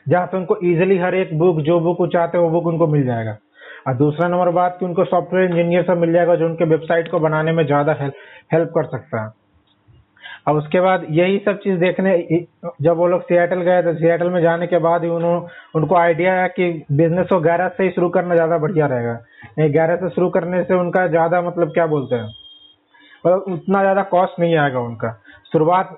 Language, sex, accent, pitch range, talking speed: Hindi, male, native, 155-180 Hz, 210 wpm